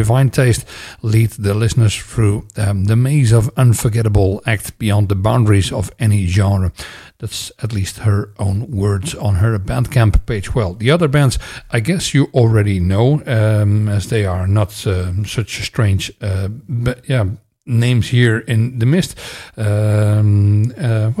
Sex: male